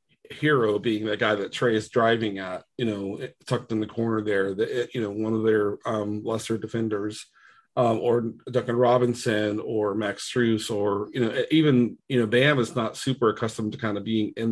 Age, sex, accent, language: 40-59, male, American, English